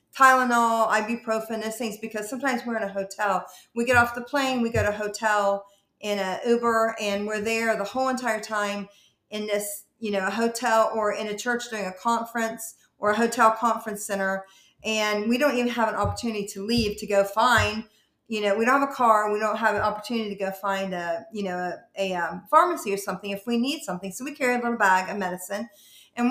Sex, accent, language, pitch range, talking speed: female, American, English, 200-240 Hz, 220 wpm